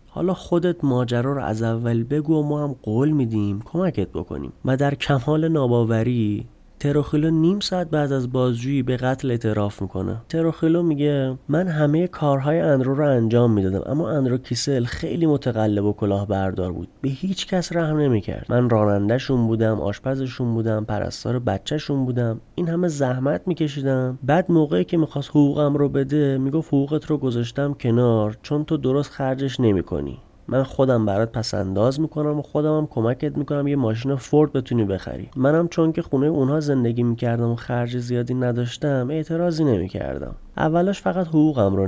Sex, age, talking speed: male, 30-49, 155 wpm